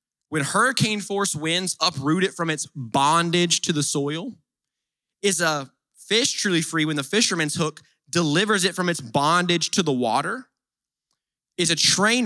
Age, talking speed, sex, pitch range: 20-39, 150 wpm, male, 130-170 Hz